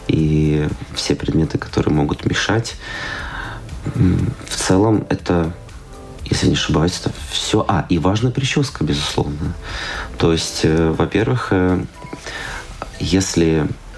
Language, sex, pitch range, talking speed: Russian, male, 80-95 Hz, 100 wpm